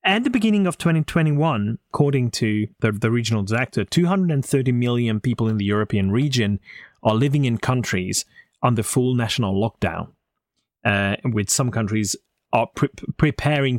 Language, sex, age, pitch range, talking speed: English, male, 30-49, 110-145 Hz, 140 wpm